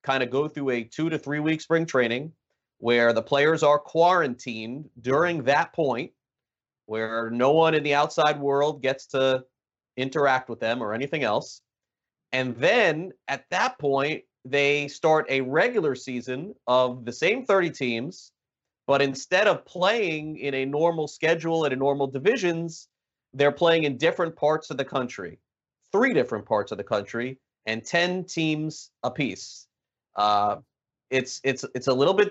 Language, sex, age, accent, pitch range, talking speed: English, male, 30-49, American, 125-150 Hz, 160 wpm